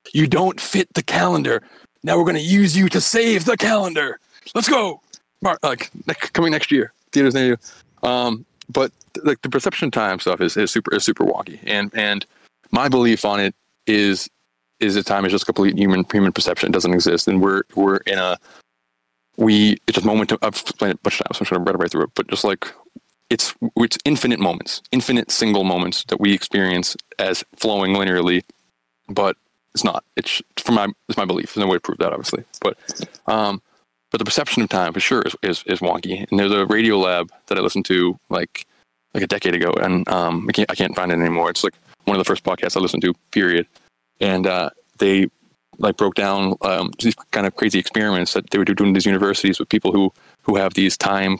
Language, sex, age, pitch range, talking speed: English, male, 20-39, 90-115 Hz, 220 wpm